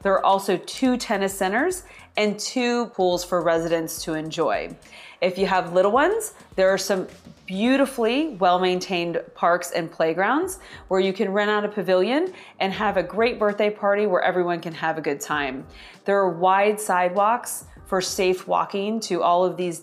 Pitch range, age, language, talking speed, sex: 170-210 Hz, 30-49, English, 175 wpm, female